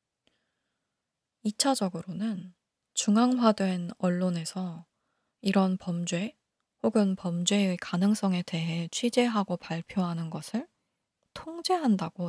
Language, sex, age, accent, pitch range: Korean, female, 20-39, native, 175-225 Hz